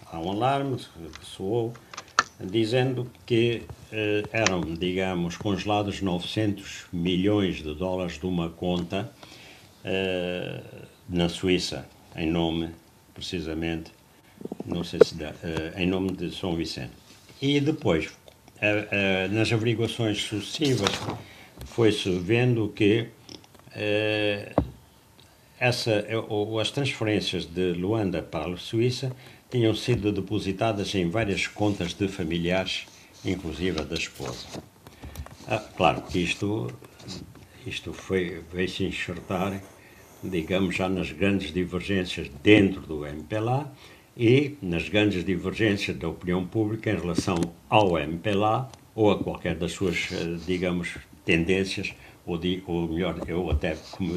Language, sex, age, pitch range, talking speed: Portuguese, male, 60-79, 85-110 Hz, 115 wpm